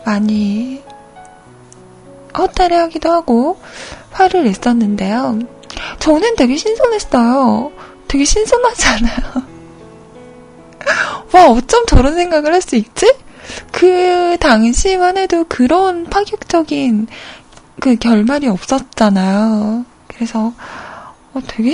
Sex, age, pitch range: female, 20-39, 220-315 Hz